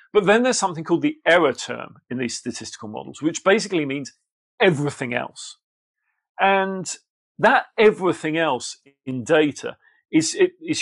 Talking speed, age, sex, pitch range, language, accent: 145 wpm, 40-59, male, 135-175 Hz, English, British